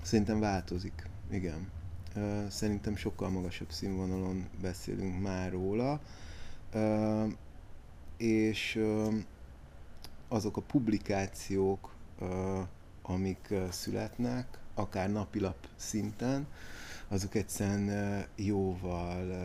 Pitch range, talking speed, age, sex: 90-110 Hz, 70 wpm, 30-49, male